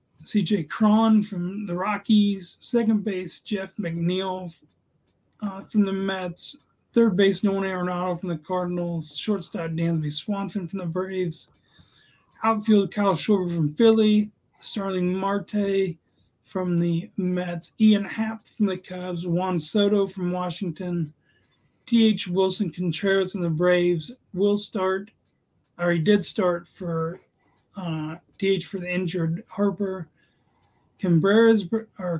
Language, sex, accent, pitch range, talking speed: English, male, American, 165-200 Hz, 120 wpm